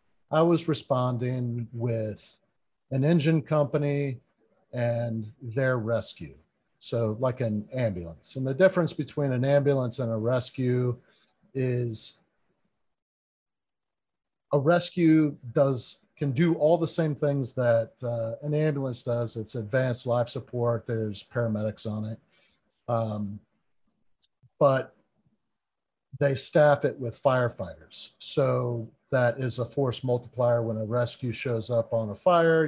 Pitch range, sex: 115-140 Hz, male